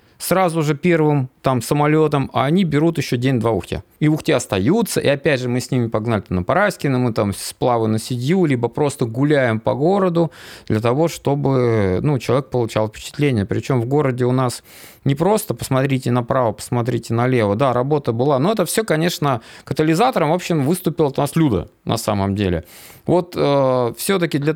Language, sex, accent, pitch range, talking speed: Russian, male, native, 115-155 Hz, 180 wpm